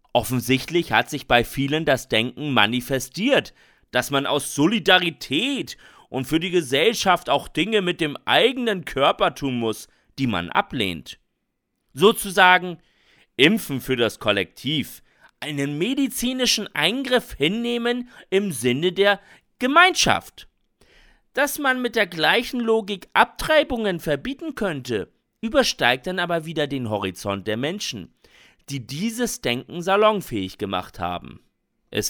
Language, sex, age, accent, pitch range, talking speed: German, male, 40-59, German, 130-195 Hz, 120 wpm